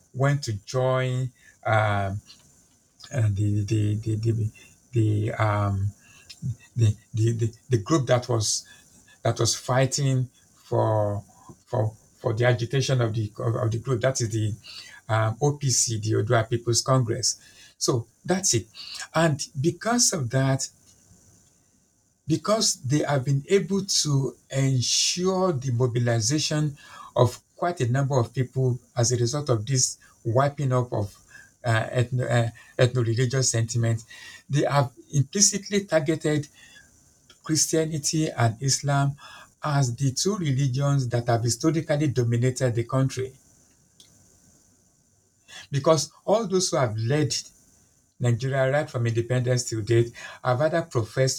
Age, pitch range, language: 60-79, 115-140 Hz, English